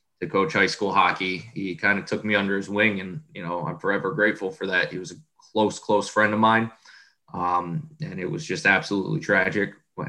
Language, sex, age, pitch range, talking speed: English, male, 20-39, 95-105 Hz, 220 wpm